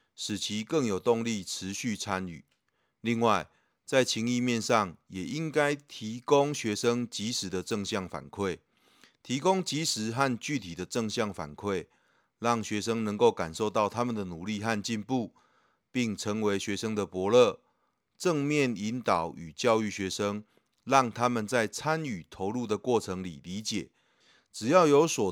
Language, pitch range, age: Chinese, 95-125 Hz, 30-49